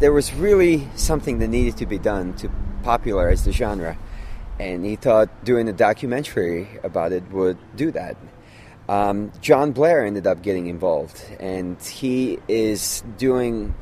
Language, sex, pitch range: English, male, 95-125 Hz